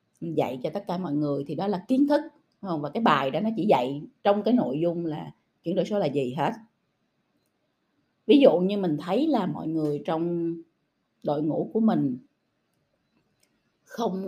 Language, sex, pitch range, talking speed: Vietnamese, female, 155-220 Hz, 190 wpm